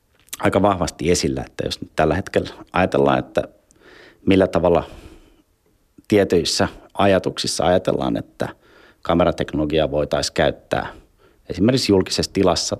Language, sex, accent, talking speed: Finnish, male, native, 105 wpm